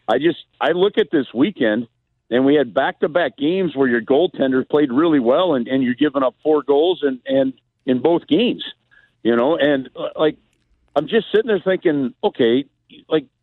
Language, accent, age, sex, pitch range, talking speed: English, American, 50-69, male, 130-185 Hz, 195 wpm